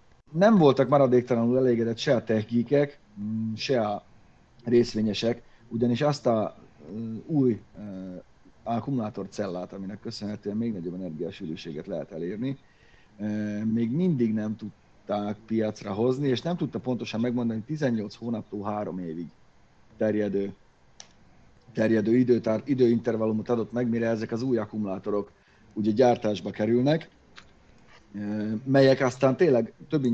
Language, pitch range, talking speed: Hungarian, 105-125 Hz, 110 wpm